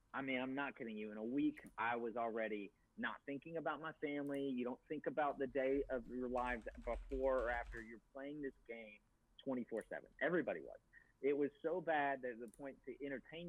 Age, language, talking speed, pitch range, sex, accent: 40-59, English, 205 wpm, 110-140 Hz, male, American